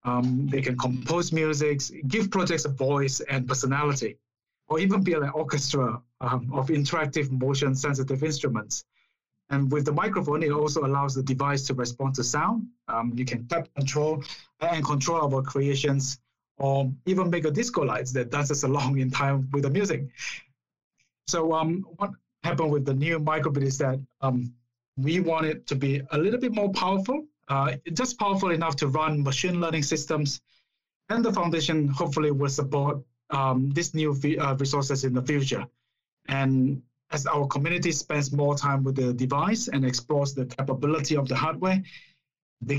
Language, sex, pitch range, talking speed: English, male, 135-155 Hz, 170 wpm